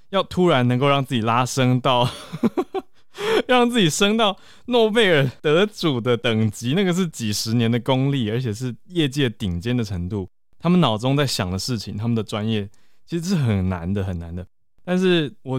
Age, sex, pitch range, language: 20-39, male, 105-145 Hz, Chinese